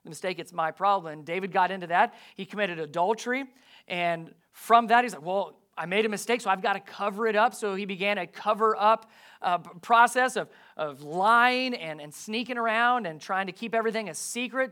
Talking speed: 210 wpm